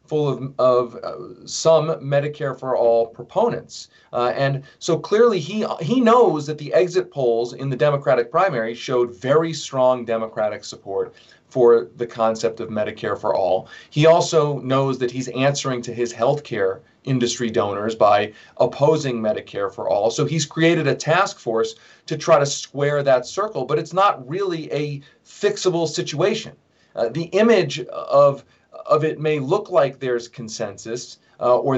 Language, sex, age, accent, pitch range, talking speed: English, male, 40-59, American, 130-180 Hz, 160 wpm